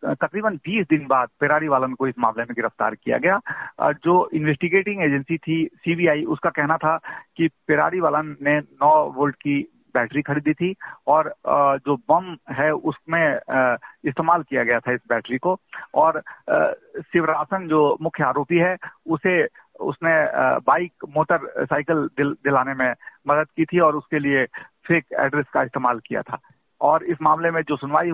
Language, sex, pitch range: Hindi, male, 135-160 Hz